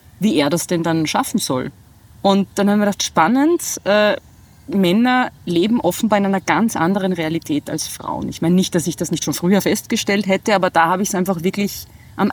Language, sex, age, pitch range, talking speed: German, female, 30-49, 165-215 Hz, 210 wpm